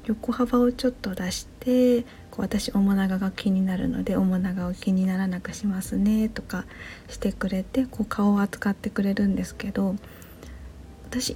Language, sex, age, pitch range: Japanese, female, 40-59, 195-255 Hz